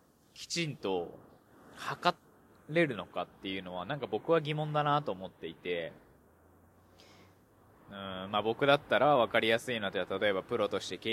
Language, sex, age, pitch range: Japanese, male, 20-39, 100-150 Hz